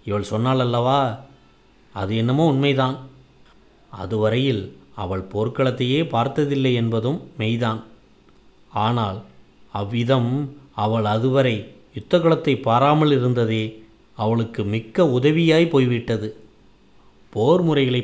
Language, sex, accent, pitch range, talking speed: Tamil, male, native, 110-140 Hz, 80 wpm